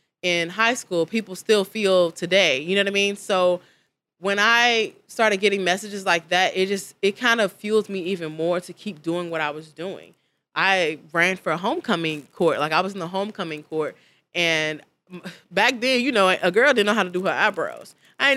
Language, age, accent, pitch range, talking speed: English, 20-39, American, 165-205 Hz, 210 wpm